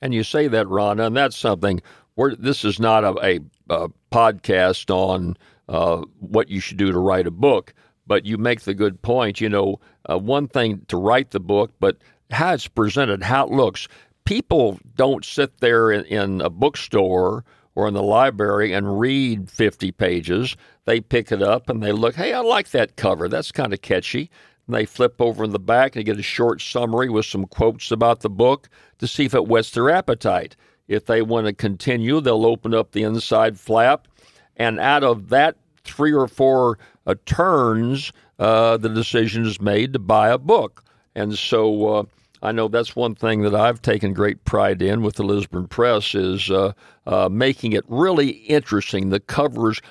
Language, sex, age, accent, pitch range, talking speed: English, male, 60-79, American, 100-120 Hz, 195 wpm